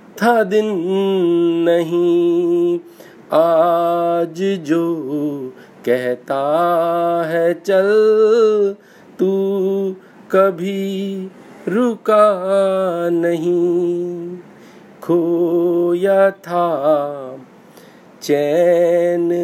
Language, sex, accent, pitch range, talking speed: Hindi, male, native, 175-195 Hz, 45 wpm